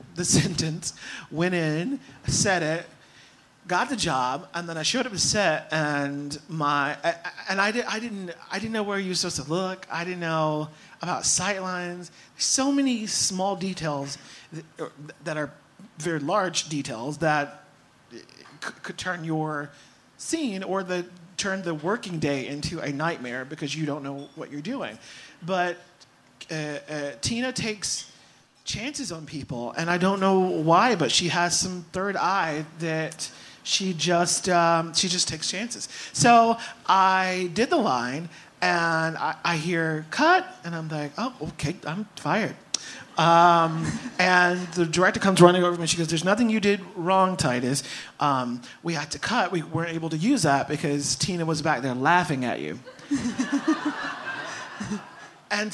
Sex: male